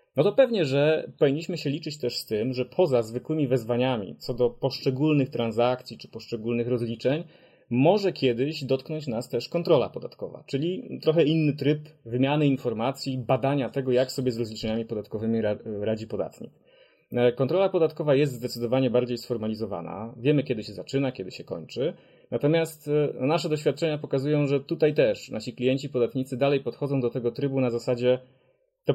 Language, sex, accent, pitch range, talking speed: Polish, male, native, 120-150 Hz, 155 wpm